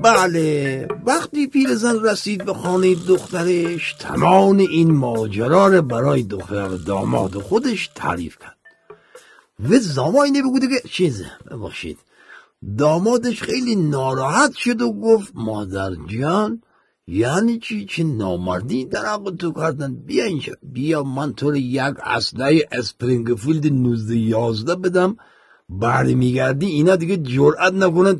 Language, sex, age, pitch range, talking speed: Persian, male, 50-69, 130-190 Hz, 115 wpm